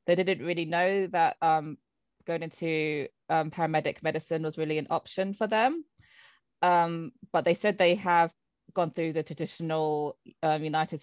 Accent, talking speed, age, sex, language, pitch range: British, 160 wpm, 20-39, female, English, 150-180 Hz